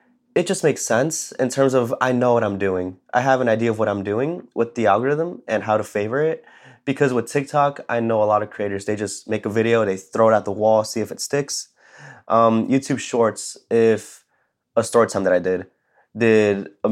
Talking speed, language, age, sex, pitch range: 225 wpm, English, 20-39, male, 100-120 Hz